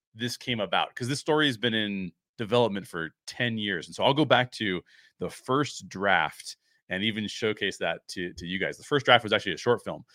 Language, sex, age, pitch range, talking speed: English, male, 30-49, 95-125 Hz, 225 wpm